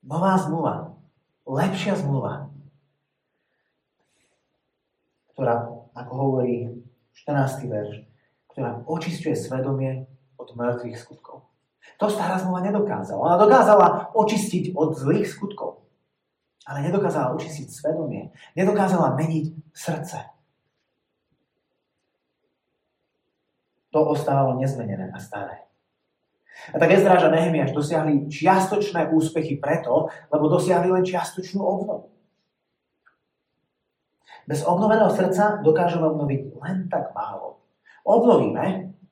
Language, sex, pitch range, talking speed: Slovak, male, 135-175 Hz, 90 wpm